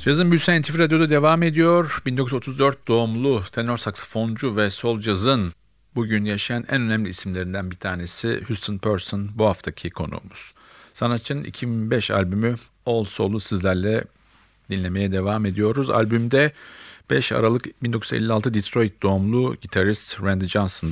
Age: 50-69